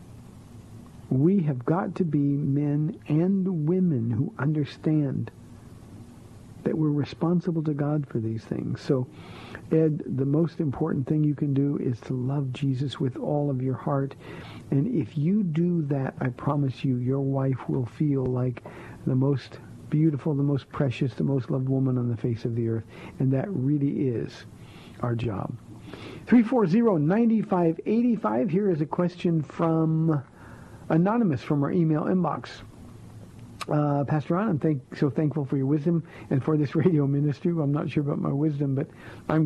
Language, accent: English, American